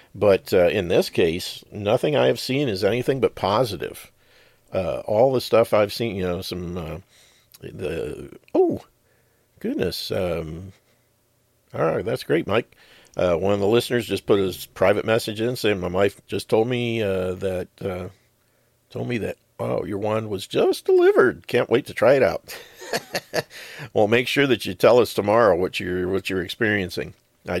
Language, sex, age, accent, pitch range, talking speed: English, male, 50-69, American, 95-120 Hz, 175 wpm